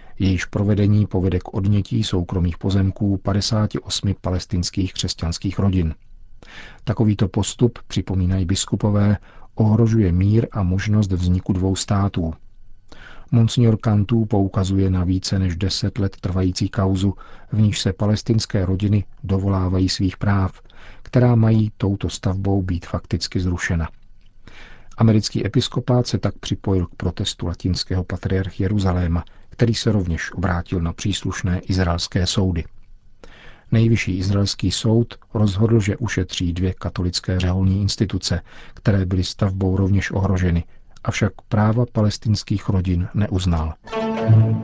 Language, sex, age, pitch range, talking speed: Czech, male, 50-69, 95-110 Hz, 115 wpm